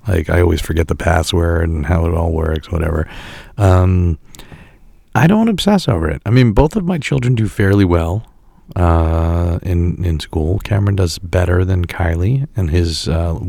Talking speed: 175 wpm